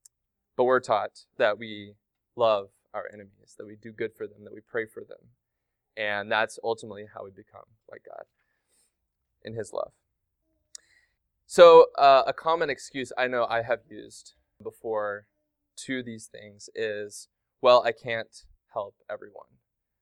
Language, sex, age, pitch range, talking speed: English, male, 20-39, 110-135 Hz, 150 wpm